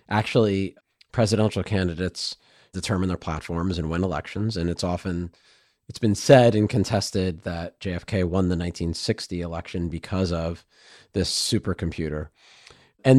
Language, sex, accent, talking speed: English, male, American, 125 wpm